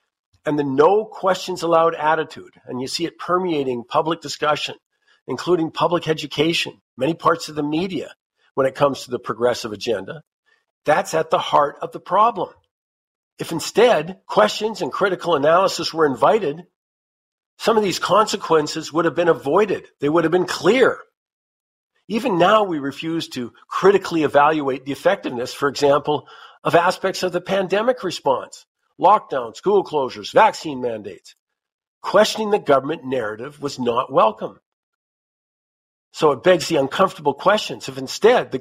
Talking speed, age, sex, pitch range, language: 145 wpm, 50-69, male, 145-185 Hz, English